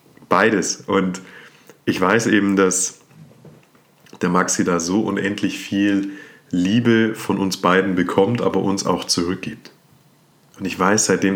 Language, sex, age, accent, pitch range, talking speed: German, male, 30-49, German, 90-105 Hz, 130 wpm